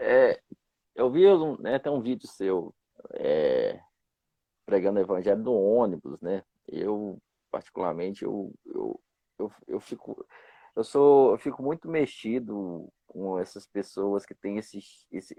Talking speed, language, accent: 135 wpm, Portuguese, Brazilian